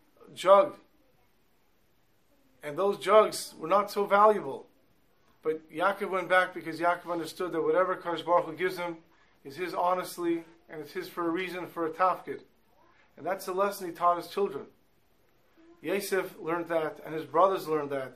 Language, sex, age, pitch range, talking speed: English, male, 40-59, 165-195 Hz, 165 wpm